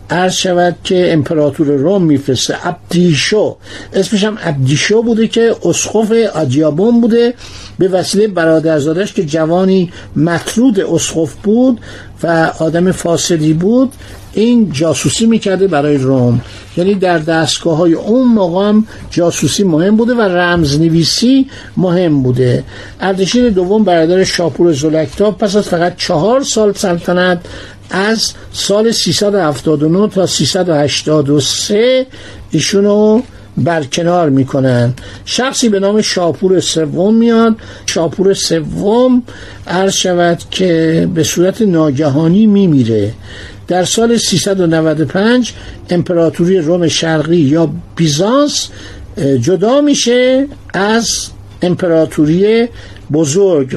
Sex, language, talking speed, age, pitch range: male, Persian, 100 wpm, 60-79, 155-210 Hz